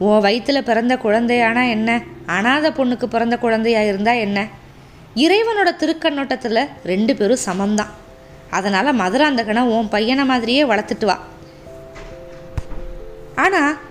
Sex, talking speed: female, 105 wpm